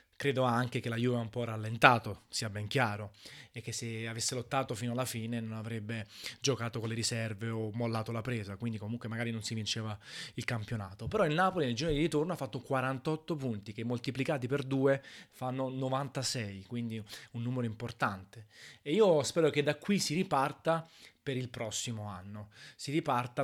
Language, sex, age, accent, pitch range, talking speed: Italian, male, 20-39, native, 115-140 Hz, 185 wpm